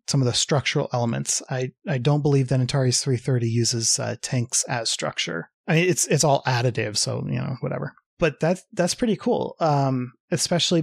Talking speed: 190 wpm